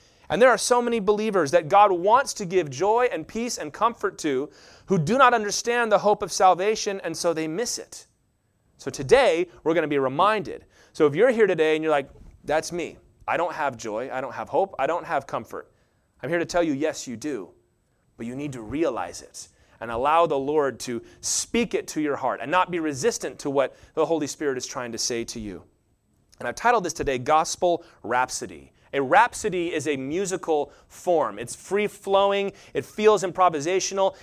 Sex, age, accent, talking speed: male, 30-49, American, 205 wpm